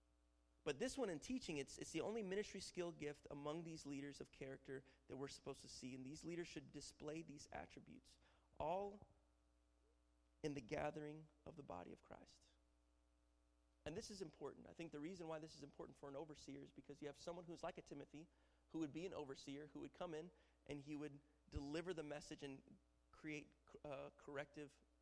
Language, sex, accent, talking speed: English, male, American, 195 wpm